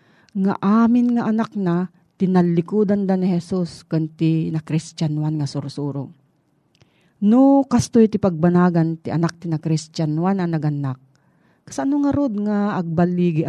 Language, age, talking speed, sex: Filipino, 40-59, 140 wpm, female